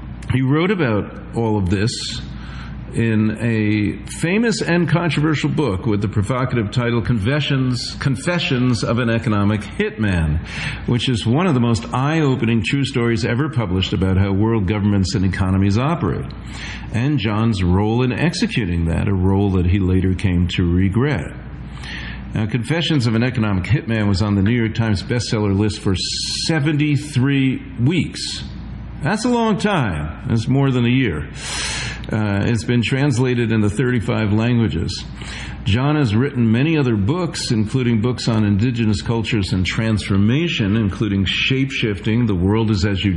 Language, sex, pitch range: English, male, 100-125 Hz